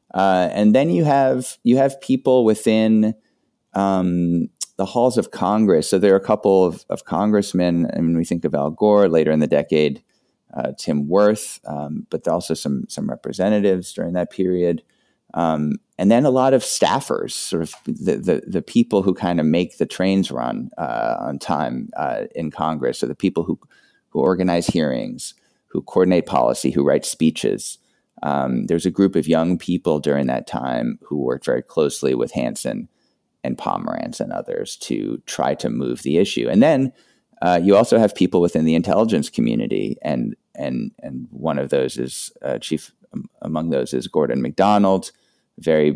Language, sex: English, male